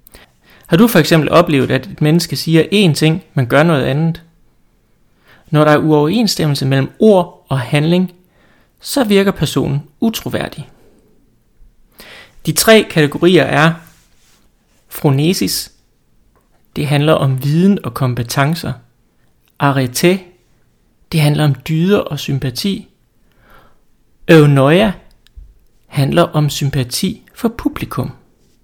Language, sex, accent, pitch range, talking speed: Danish, male, native, 140-170 Hz, 105 wpm